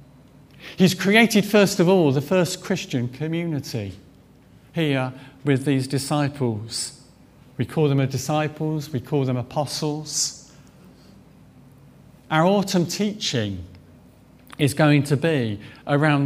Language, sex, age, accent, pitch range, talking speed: English, male, 50-69, British, 125-160 Hz, 110 wpm